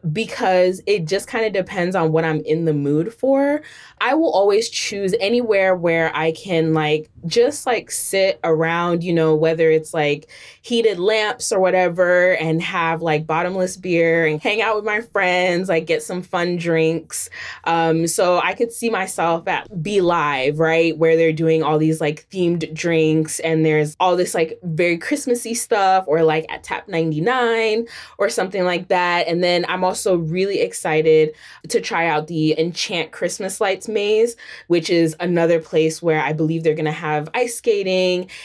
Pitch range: 160-195 Hz